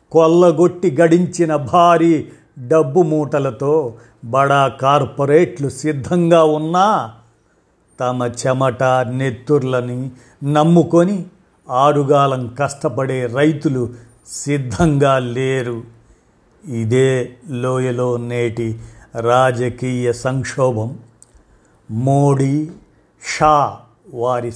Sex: male